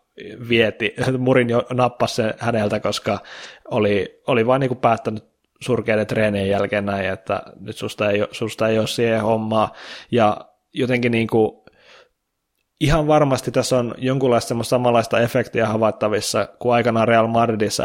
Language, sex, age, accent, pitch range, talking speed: Finnish, male, 20-39, native, 110-125 Hz, 140 wpm